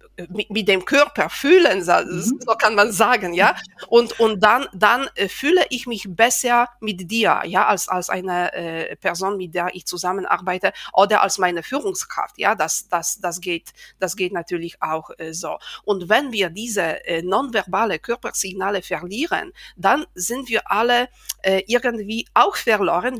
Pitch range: 180-230 Hz